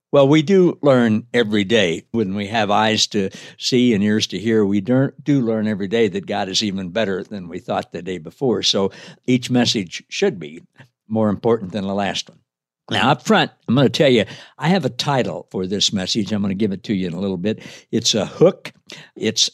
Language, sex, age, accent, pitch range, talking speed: English, male, 60-79, American, 100-125 Hz, 225 wpm